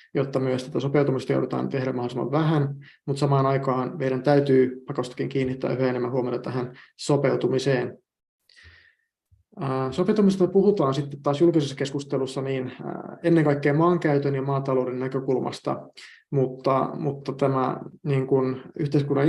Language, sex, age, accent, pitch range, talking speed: Finnish, male, 30-49, native, 130-150 Hz, 115 wpm